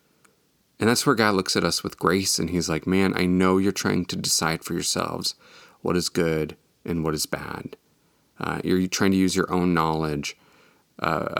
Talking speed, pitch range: 195 wpm, 85-100 Hz